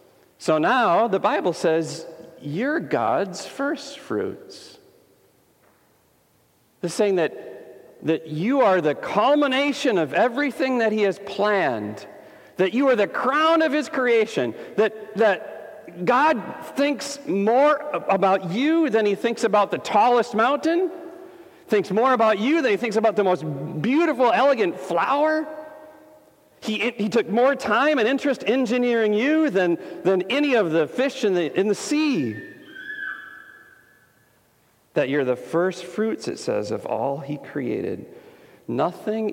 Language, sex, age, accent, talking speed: English, male, 50-69, American, 135 wpm